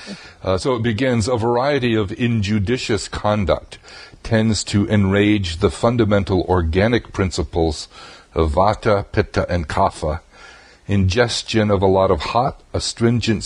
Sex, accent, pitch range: male, American, 85-110 Hz